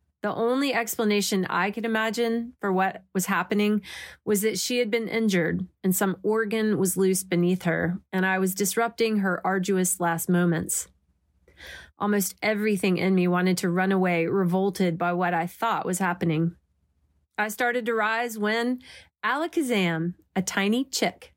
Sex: female